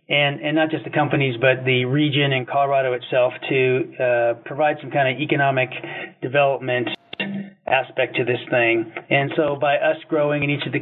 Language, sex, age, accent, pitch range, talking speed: English, male, 40-59, American, 130-160 Hz, 185 wpm